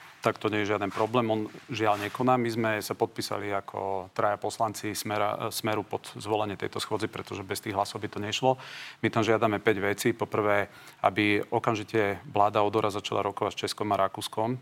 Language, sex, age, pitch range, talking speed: Slovak, male, 40-59, 100-110 Hz, 190 wpm